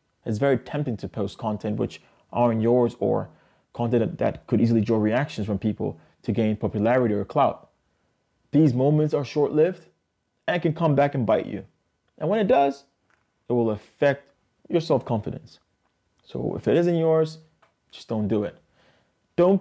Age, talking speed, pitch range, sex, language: 20-39, 165 wpm, 110-135 Hz, male, English